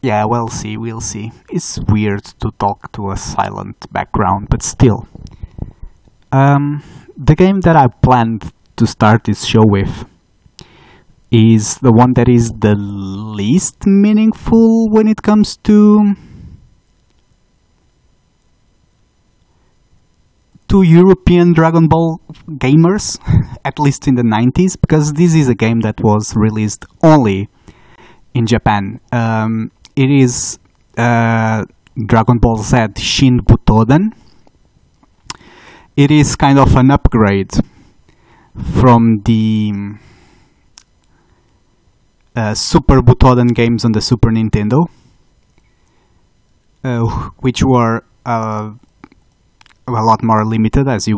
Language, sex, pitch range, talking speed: English, male, 110-145 Hz, 110 wpm